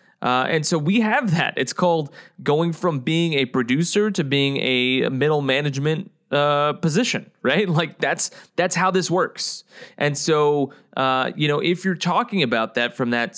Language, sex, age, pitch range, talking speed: English, male, 20-39, 140-185 Hz, 175 wpm